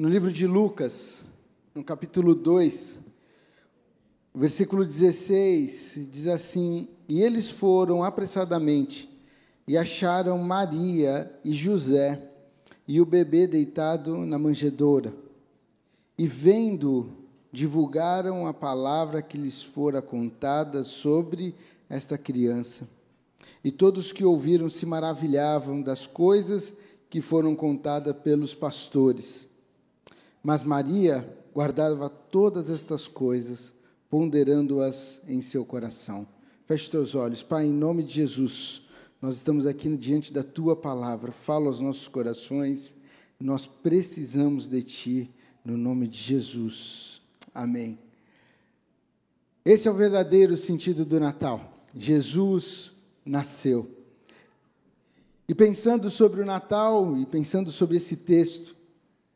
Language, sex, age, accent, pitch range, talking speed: Portuguese, male, 50-69, Brazilian, 135-175 Hz, 110 wpm